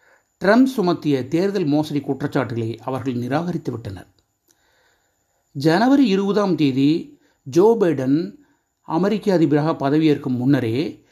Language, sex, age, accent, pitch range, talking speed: Tamil, male, 30-49, native, 135-185 Hz, 85 wpm